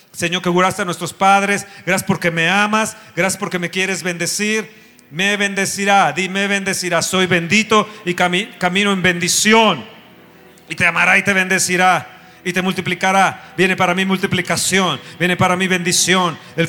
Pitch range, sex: 180-215 Hz, male